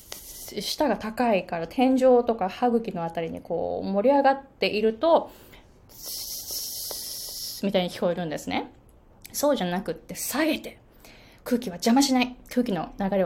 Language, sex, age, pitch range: Japanese, female, 20-39, 185-270 Hz